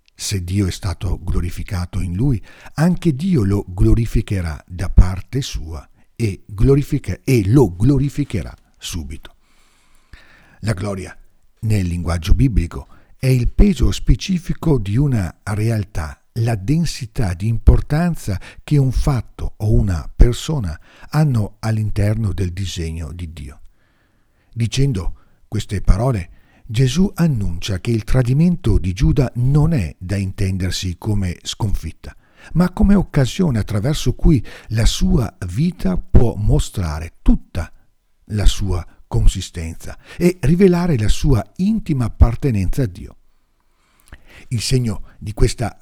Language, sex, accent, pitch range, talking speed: Italian, male, native, 90-135 Hz, 115 wpm